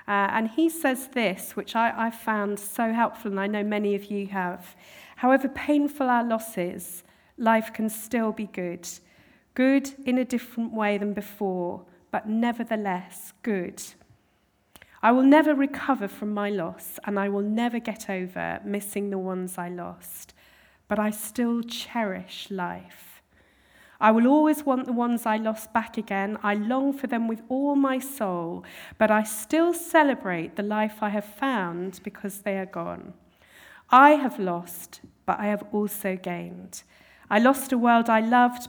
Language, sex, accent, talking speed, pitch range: English, female, British, 165 wpm, 190-230 Hz